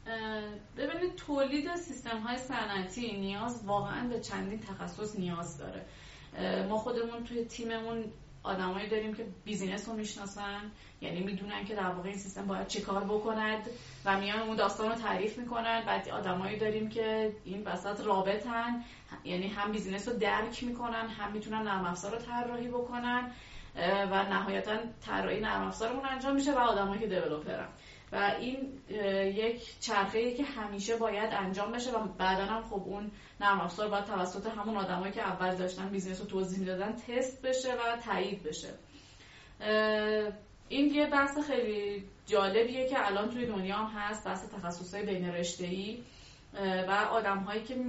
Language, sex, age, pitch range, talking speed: Persian, female, 30-49, 195-235 Hz, 150 wpm